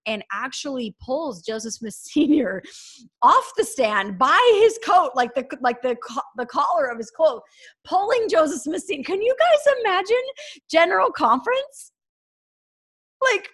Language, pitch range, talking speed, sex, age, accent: English, 190-300 Hz, 140 wpm, female, 30-49, American